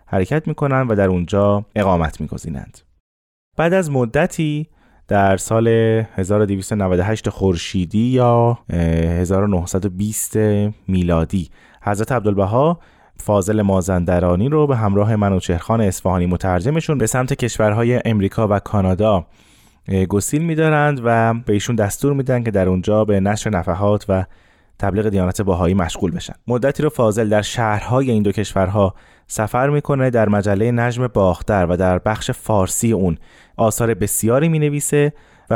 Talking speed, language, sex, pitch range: 130 wpm, Persian, male, 95-125 Hz